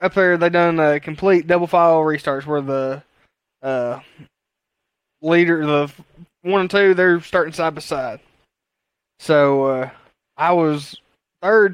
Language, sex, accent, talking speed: English, male, American, 140 wpm